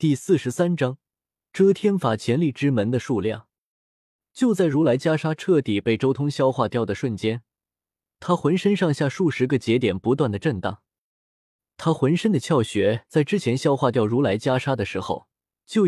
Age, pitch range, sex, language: 20-39, 110-160 Hz, male, Chinese